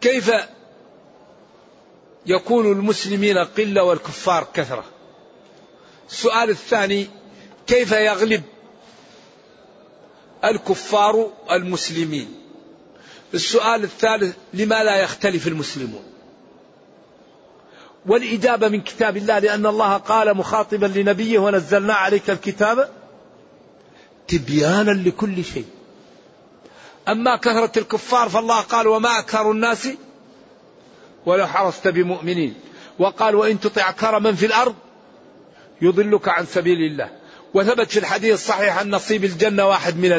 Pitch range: 190-220 Hz